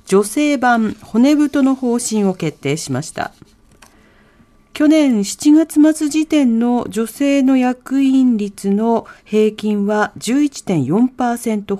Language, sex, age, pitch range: Japanese, female, 40-59, 200-275 Hz